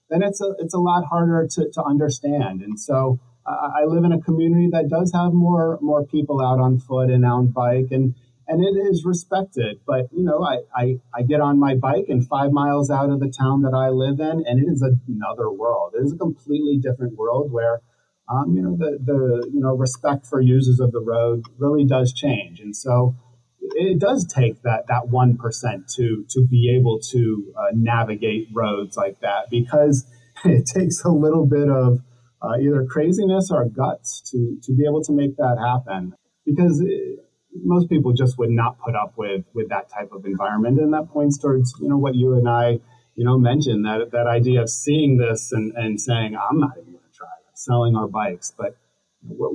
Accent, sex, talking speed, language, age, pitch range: American, male, 210 wpm, English, 40-59, 120-150 Hz